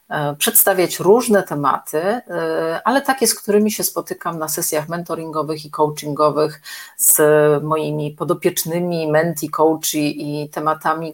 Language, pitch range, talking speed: Polish, 155-185 Hz, 115 wpm